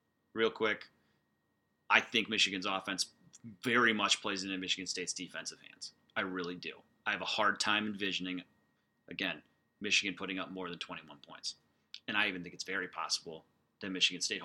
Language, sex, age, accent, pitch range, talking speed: English, male, 30-49, American, 95-120 Hz, 170 wpm